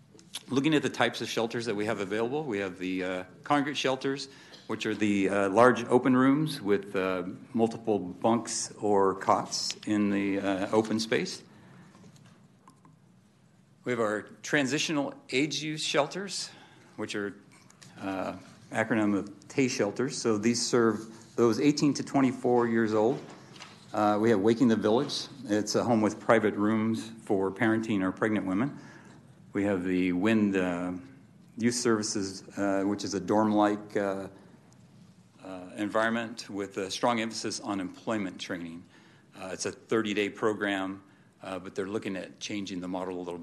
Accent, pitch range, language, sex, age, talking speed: American, 95-120 Hz, English, male, 50-69, 150 wpm